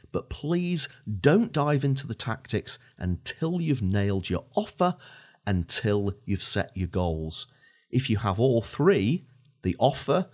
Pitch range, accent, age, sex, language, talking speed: 95-135 Hz, British, 40-59, male, English, 140 wpm